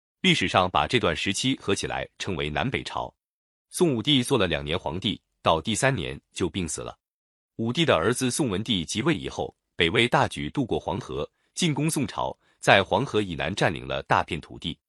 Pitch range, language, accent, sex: 90-140 Hz, Chinese, native, male